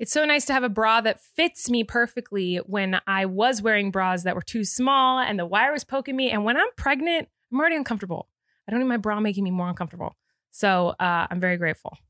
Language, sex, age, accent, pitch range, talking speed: English, female, 20-39, American, 205-280 Hz, 235 wpm